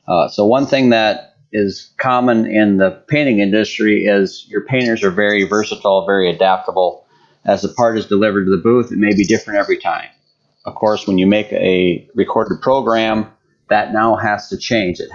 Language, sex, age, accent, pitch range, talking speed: English, male, 40-59, American, 100-115 Hz, 185 wpm